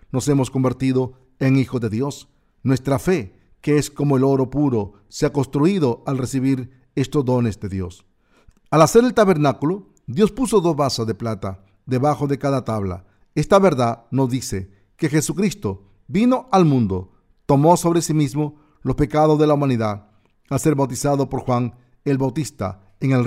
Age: 50-69